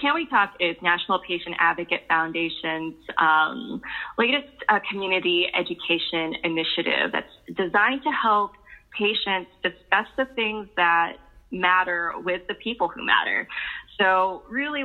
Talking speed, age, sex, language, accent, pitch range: 125 wpm, 20-39, female, English, American, 170-210 Hz